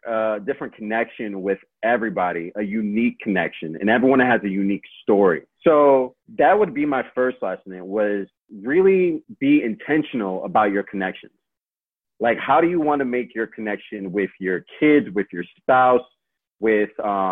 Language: English